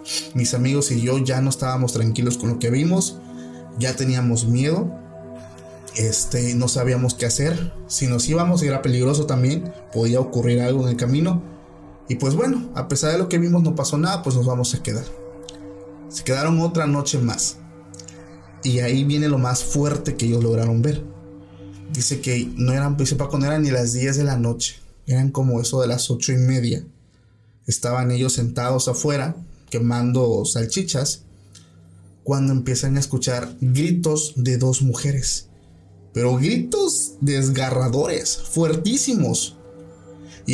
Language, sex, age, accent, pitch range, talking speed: Spanish, male, 30-49, Venezuelan, 120-150 Hz, 150 wpm